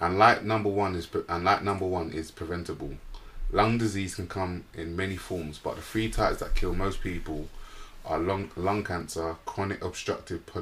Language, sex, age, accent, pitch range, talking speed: English, male, 20-39, British, 80-100 Hz, 160 wpm